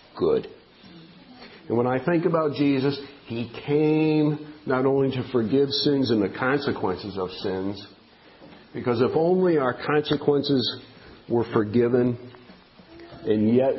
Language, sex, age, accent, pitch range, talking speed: English, male, 50-69, American, 100-140 Hz, 120 wpm